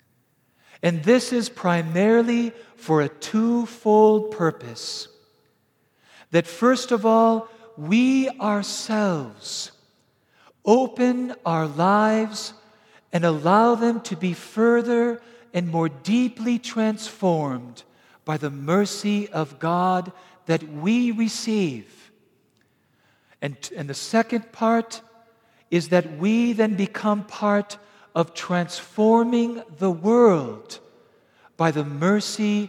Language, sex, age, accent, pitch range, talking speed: English, male, 50-69, American, 160-225 Hz, 95 wpm